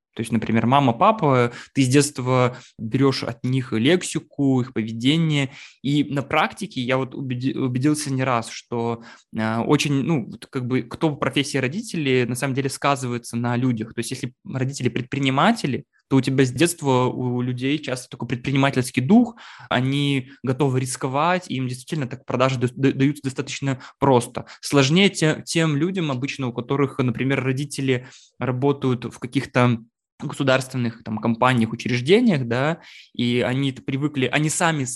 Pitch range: 125-145 Hz